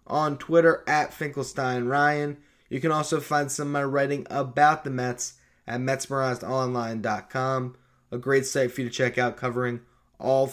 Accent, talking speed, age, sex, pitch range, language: American, 155 wpm, 20-39, male, 130-175 Hz, English